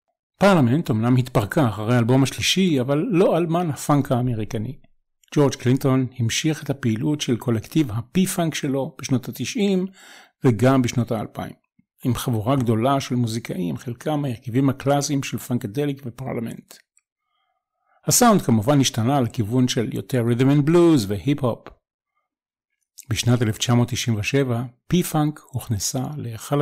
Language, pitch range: Hebrew, 120-150 Hz